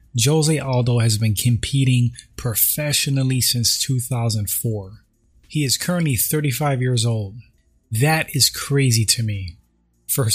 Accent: American